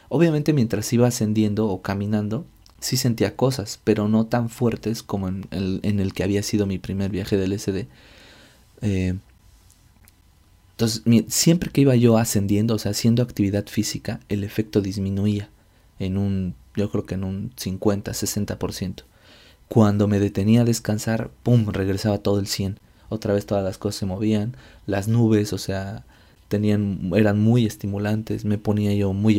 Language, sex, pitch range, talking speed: Spanish, male, 100-110 Hz, 160 wpm